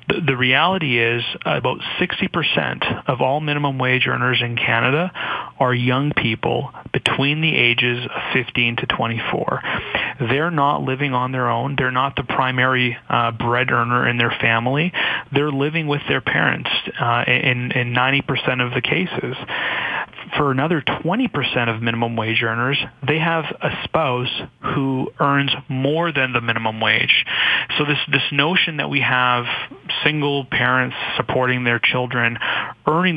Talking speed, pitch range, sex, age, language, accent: 145 wpm, 120-145 Hz, male, 30-49, English, American